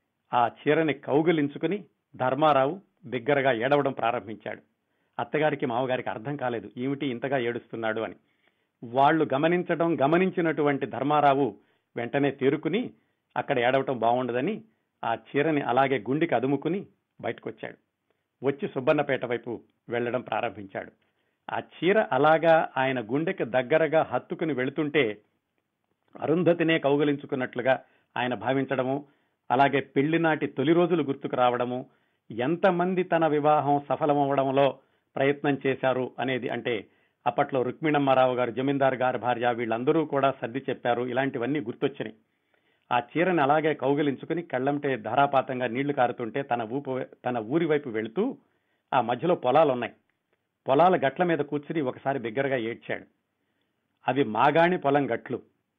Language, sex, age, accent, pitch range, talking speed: Telugu, male, 50-69, native, 125-155 Hz, 110 wpm